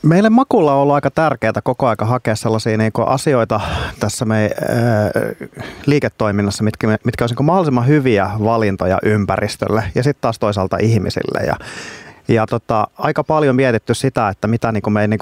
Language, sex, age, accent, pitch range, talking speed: Finnish, male, 30-49, native, 100-130 Hz, 160 wpm